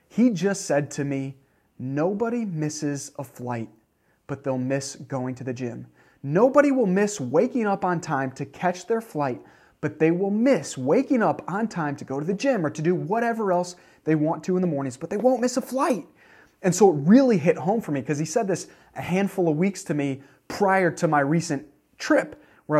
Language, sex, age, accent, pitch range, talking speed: English, male, 30-49, American, 140-195 Hz, 215 wpm